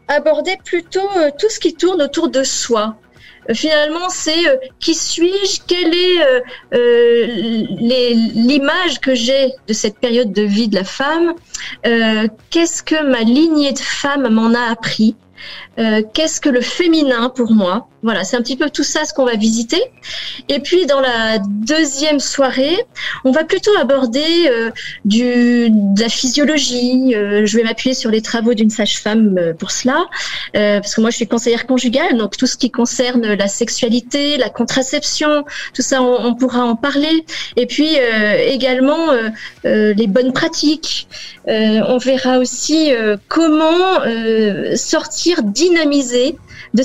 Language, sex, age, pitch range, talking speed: French, female, 30-49, 235-310 Hz, 165 wpm